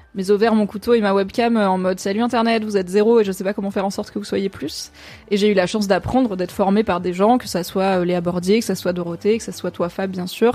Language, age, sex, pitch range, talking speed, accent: French, 20-39, female, 185-210 Hz, 315 wpm, French